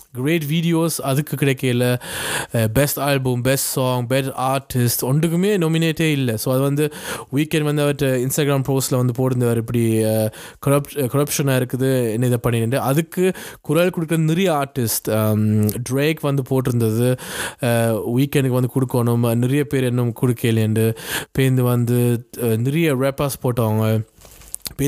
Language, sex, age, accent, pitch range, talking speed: Tamil, male, 20-39, native, 125-150 Hz, 125 wpm